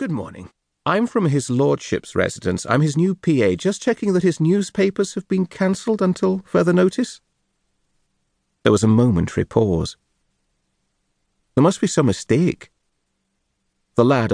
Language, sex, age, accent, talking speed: English, male, 40-59, British, 140 wpm